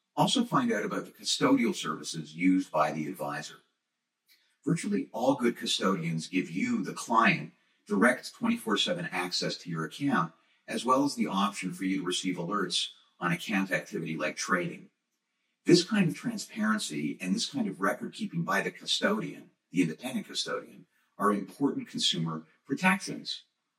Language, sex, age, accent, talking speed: English, male, 50-69, American, 150 wpm